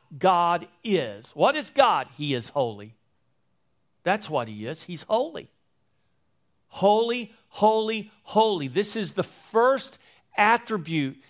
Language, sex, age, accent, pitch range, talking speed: English, male, 50-69, American, 140-220 Hz, 115 wpm